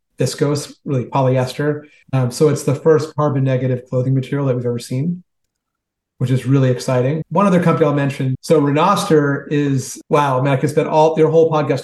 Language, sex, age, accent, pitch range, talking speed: English, male, 40-59, American, 130-160 Hz, 180 wpm